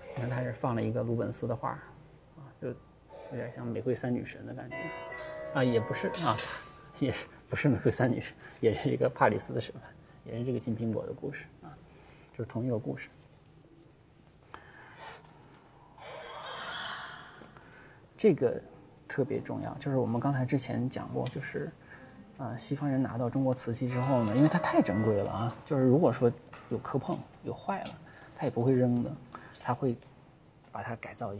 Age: 20-39